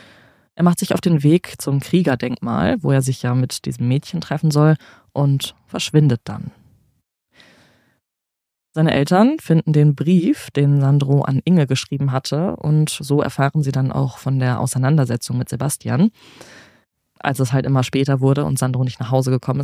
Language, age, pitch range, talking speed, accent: German, 20-39, 130-150 Hz, 165 wpm, German